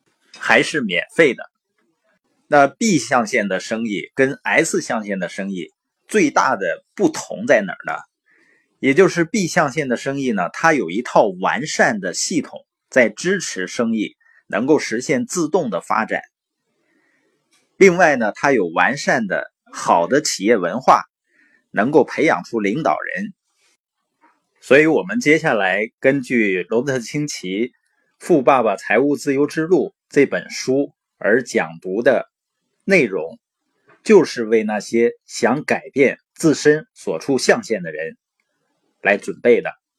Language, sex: Chinese, male